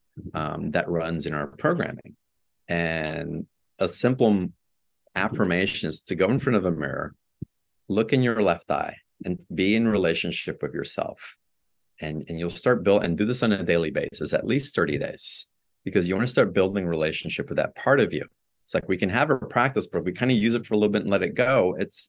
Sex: male